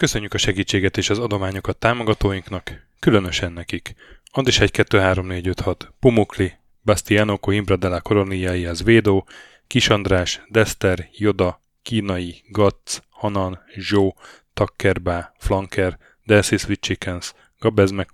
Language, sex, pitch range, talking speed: Hungarian, male, 90-105 Hz, 95 wpm